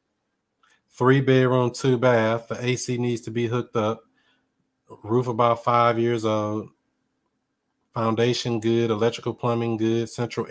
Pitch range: 110-120 Hz